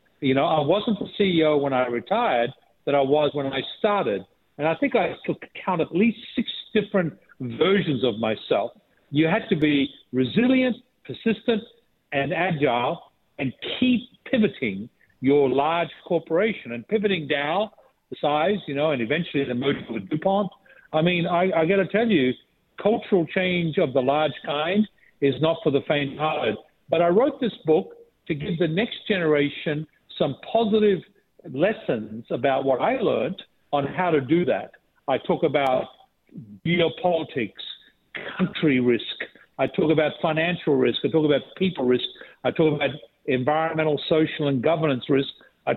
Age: 60-79